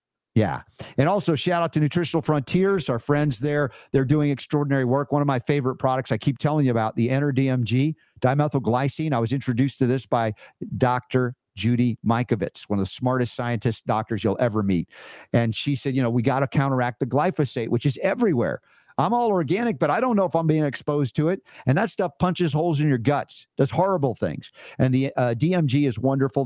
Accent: American